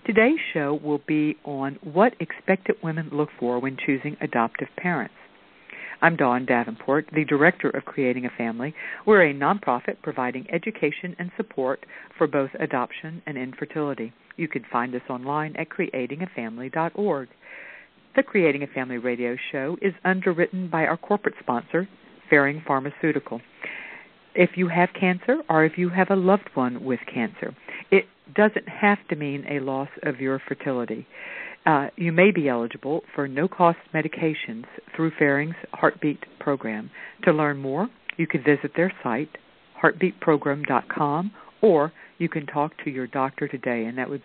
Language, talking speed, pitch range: English, 150 wpm, 130-170 Hz